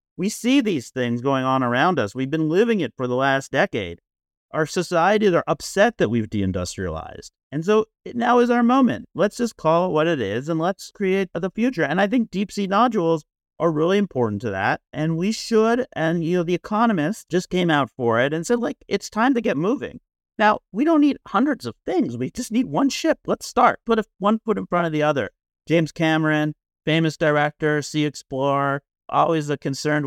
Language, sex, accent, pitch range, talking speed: English, male, American, 120-200 Hz, 215 wpm